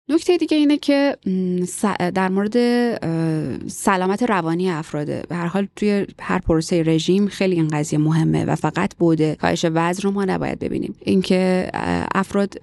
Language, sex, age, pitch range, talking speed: Persian, female, 30-49, 150-190 Hz, 145 wpm